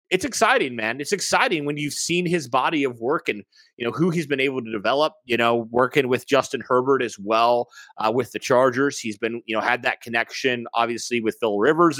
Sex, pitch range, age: male, 120-165 Hz, 30-49